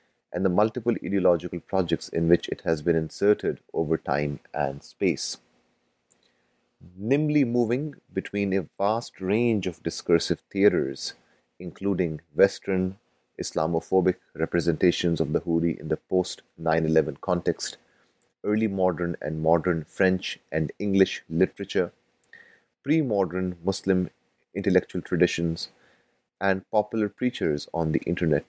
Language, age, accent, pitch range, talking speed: English, 30-49, Indian, 80-100 Hz, 115 wpm